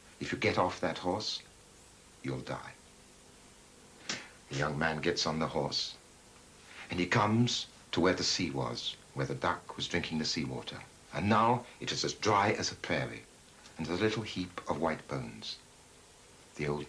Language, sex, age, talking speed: English, male, 60-79, 175 wpm